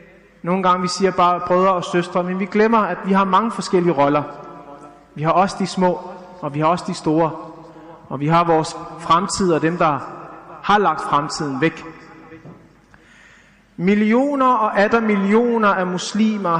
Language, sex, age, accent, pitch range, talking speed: Danish, male, 30-49, native, 180-230 Hz, 165 wpm